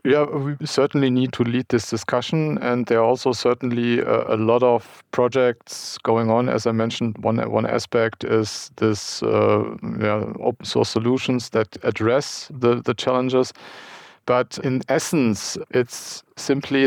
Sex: male